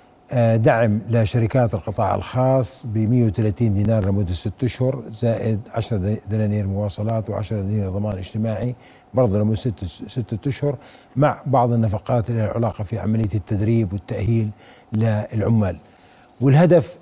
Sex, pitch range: male, 105-125 Hz